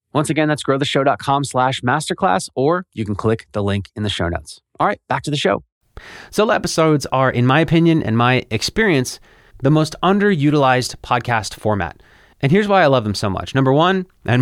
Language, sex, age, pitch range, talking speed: English, male, 30-49, 120-160 Hz, 195 wpm